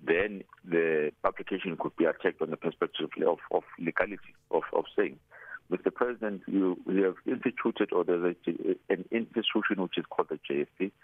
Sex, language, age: male, English, 50-69